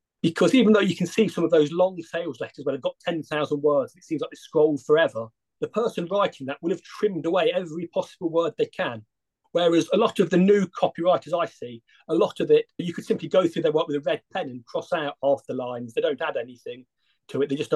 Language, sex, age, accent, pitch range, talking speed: English, male, 40-59, British, 140-185 Hz, 250 wpm